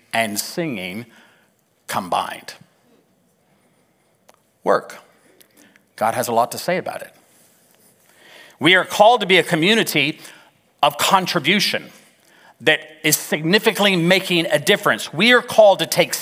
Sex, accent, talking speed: male, American, 120 wpm